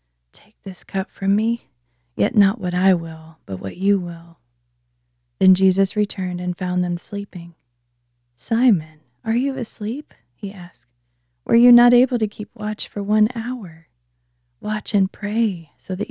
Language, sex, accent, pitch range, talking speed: English, female, American, 140-195 Hz, 155 wpm